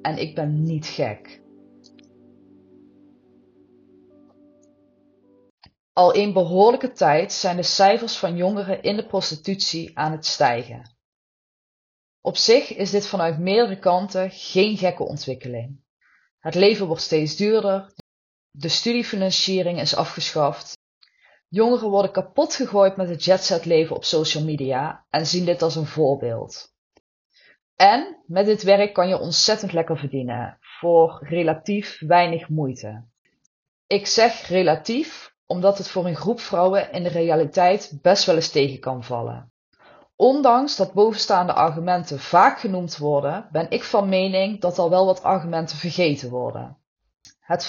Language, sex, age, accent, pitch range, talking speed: Dutch, female, 20-39, Dutch, 155-200 Hz, 130 wpm